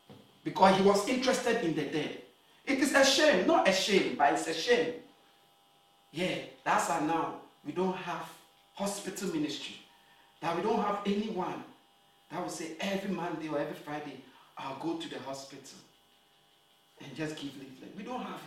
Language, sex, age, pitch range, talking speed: English, male, 50-69, 145-225 Hz, 170 wpm